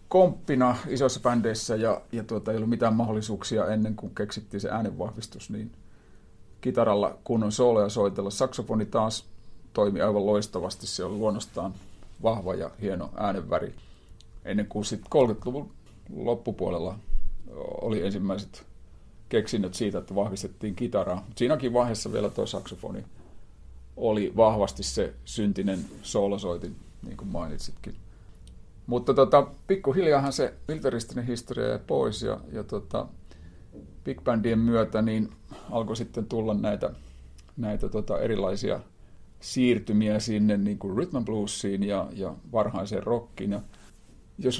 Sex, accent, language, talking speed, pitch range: male, native, Finnish, 120 wpm, 100-115 Hz